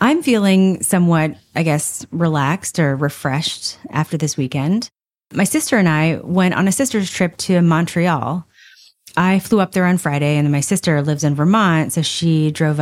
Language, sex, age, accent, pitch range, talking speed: English, female, 30-49, American, 150-190 Hz, 175 wpm